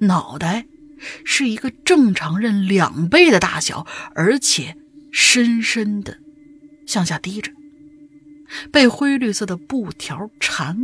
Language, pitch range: Chinese, 195-295 Hz